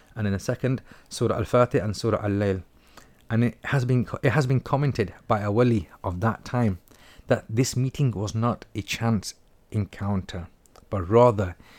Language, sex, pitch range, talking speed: English, male, 100-125 Hz, 175 wpm